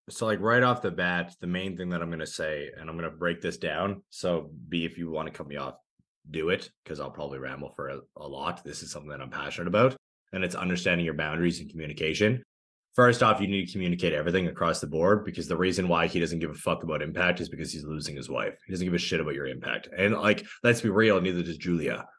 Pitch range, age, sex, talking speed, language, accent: 85-100 Hz, 20-39, male, 260 wpm, English, American